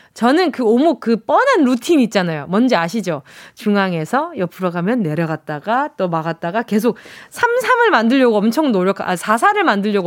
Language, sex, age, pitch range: Korean, female, 20-39, 185-270 Hz